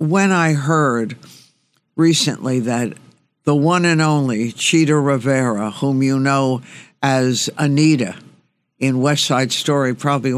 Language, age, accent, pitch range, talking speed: English, 60-79, American, 130-160 Hz, 120 wpm